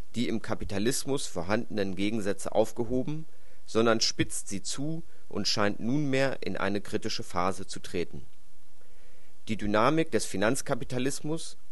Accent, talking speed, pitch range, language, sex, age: German, 120 wpm, 100-130 Hz, German, male, 30-49